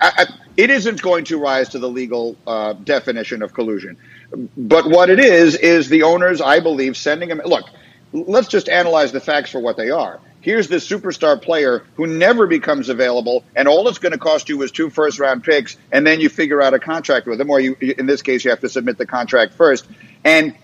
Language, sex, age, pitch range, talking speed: English, male, 50-69, 140-185 Hz, 225 wpm